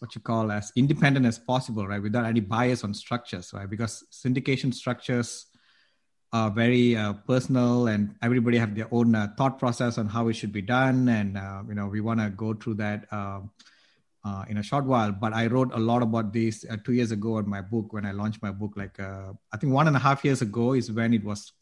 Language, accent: English, Indian